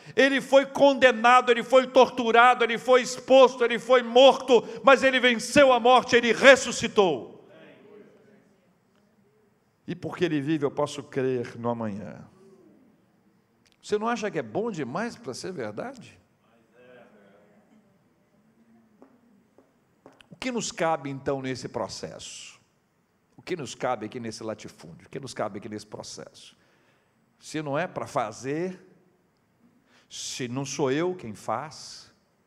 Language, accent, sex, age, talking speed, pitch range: Portuguese, Brazilian, male, 60-79, 130 wpm, 170-255 Hz